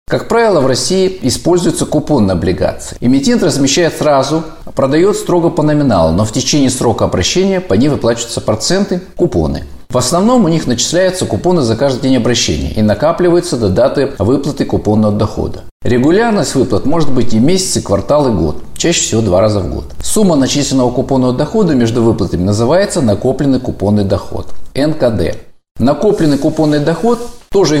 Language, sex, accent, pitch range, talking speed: Russian, male, native, 110-170 Hz, 155 wpm